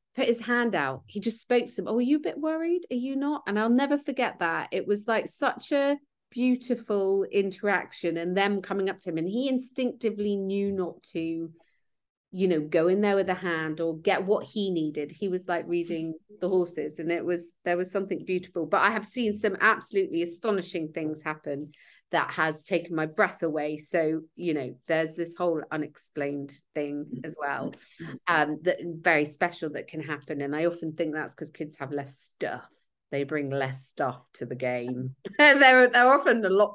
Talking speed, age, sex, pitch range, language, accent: 205 wpm, 40-59, female, 155-220 Hz, English, British